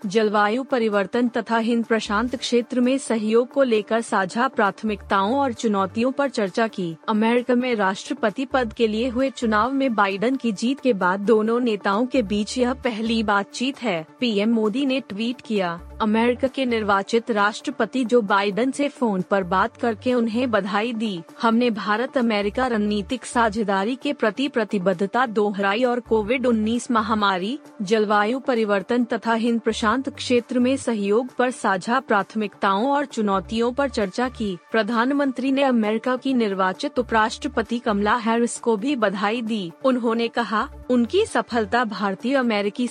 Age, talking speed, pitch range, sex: 30-49, 110 wpm, 210-250 Hz, female